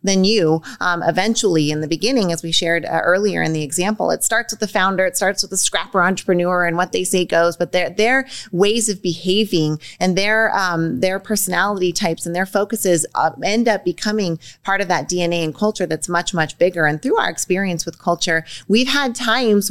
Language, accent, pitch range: English, American, 165-200 Hz